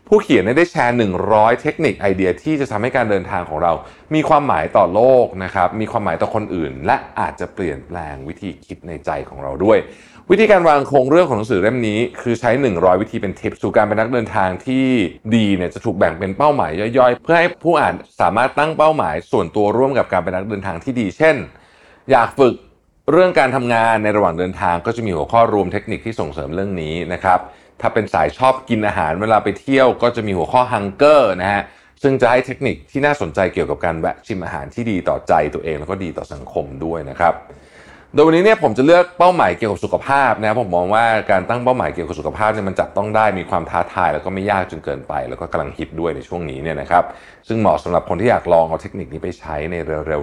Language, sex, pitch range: Thai, male, 90-130 Hz